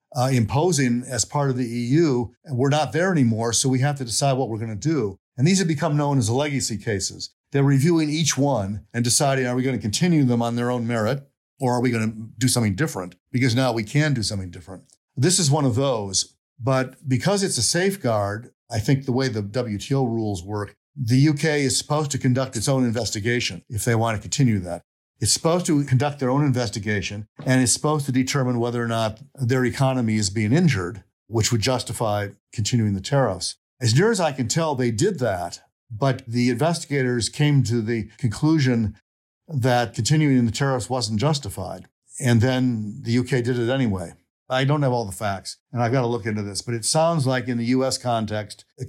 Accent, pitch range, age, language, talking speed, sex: American, 110-135 Hz, 50-69, English, 210 wpm, male